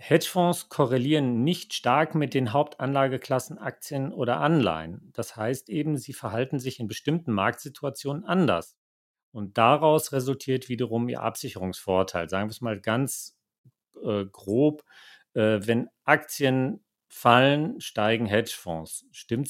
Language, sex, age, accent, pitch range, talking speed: German, male, 40-59, German, 105-140 Hz, 125 wpm